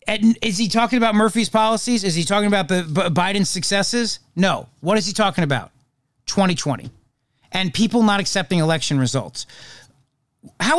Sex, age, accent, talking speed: male, 40-59, American, 160 wpm